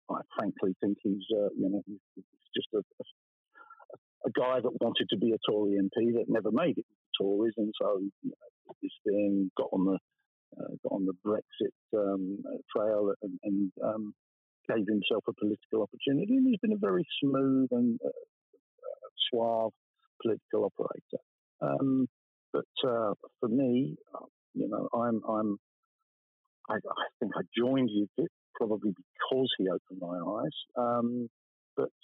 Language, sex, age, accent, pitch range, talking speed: English, male, 50-69, British, 105-160 Hz, 160 wpm